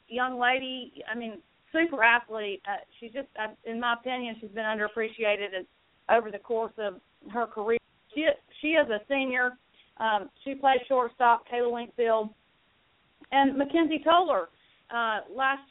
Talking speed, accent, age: 150 wpm, American, 40-59